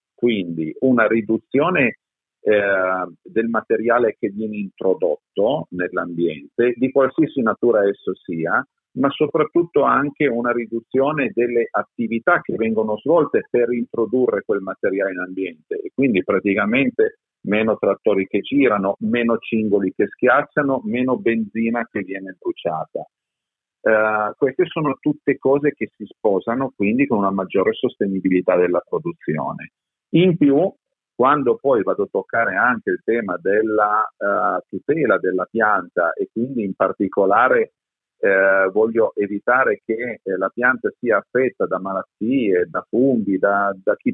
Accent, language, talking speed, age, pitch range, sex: native, Italian, 130 wpm, 50-69, 100-140 Hz, male